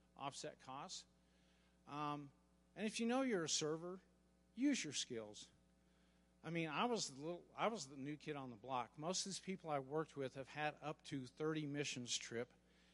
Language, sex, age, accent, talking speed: English, male, 50-69, American, 175 wpm